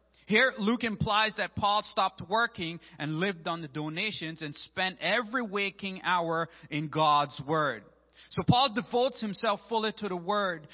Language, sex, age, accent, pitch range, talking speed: English, male, 30-49, American, 145-205 Hz, 155 wpm